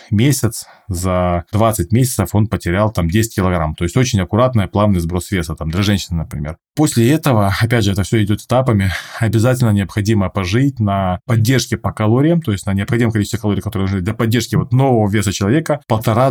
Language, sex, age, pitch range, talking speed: Russian, male, 20-39, 100-125 Hz, 185 wpm